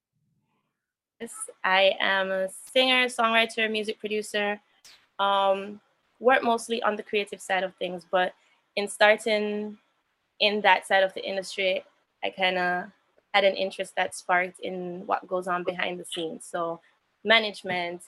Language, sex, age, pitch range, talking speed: English, female, 20-39, 185-215 Hz, 140 wpm